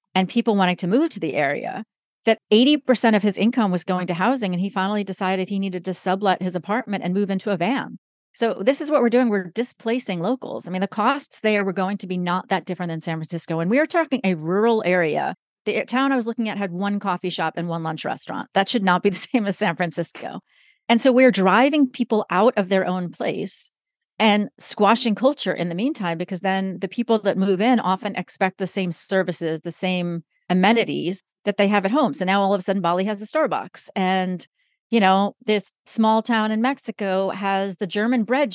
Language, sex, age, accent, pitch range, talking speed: English, female, 30-49, American, 185-235 Hz, 225 wpm